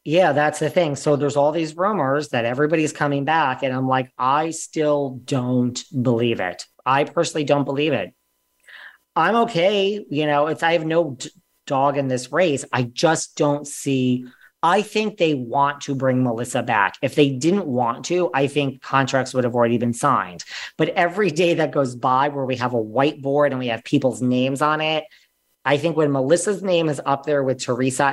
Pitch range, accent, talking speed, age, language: 125-150 Hz, American, 195 wpm, 40-59, English